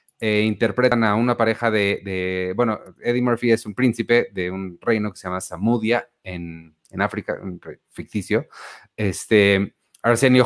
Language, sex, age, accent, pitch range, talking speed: Spanish, male, 30-49, Mexican, 100-125 Hz, 160 wpm